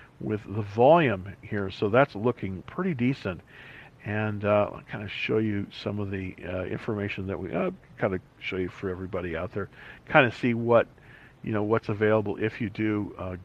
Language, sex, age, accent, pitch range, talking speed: English, male, 50-69, American, 100-130 Hz, 195 wpm